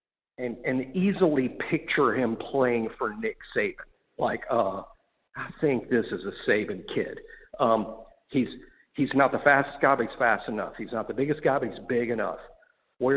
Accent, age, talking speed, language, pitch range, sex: American, 50-69, 180 wpm, English, 125-195 Hz, male